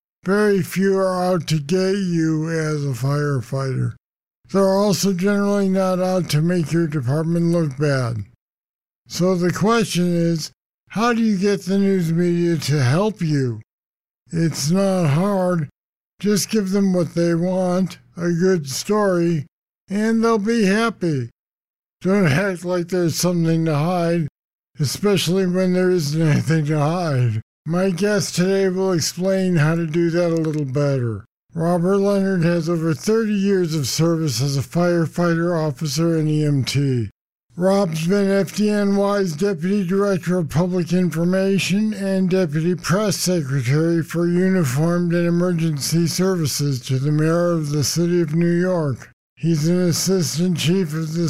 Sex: male